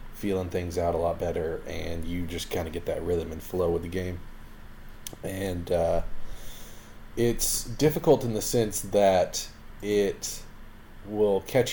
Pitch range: 90-105 Hz